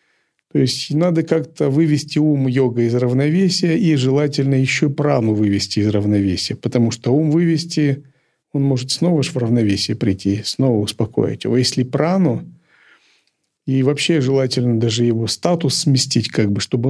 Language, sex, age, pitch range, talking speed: Russian, male, 40-59, 115-145 Hz, 150 wpm